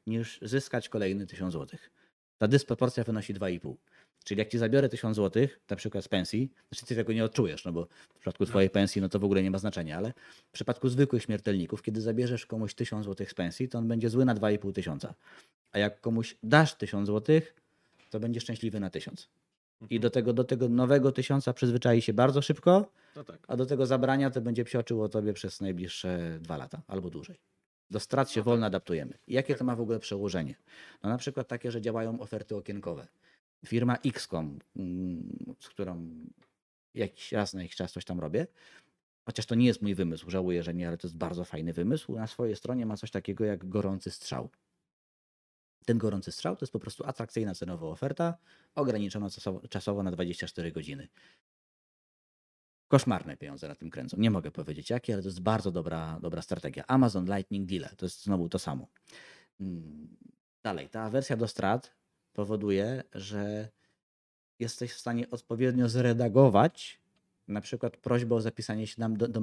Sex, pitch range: male, 95-120 Hz